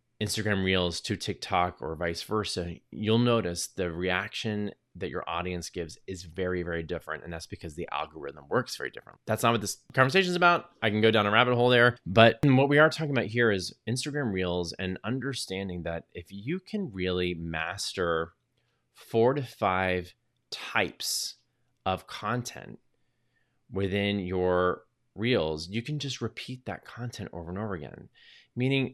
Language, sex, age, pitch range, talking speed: English, male, 20-39, 90-120 Hz, 165 wpm